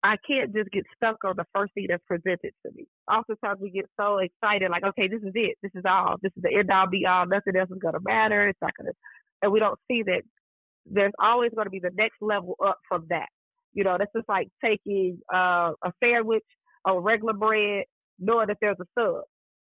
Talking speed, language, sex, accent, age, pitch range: 230 wpm, English, female, American, 30-49, 195-250 Hz